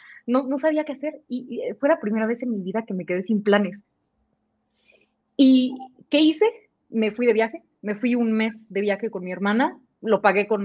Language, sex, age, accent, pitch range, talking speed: Spanish, female, 20-39, Mexican, 210-265 Hz, 215 wpm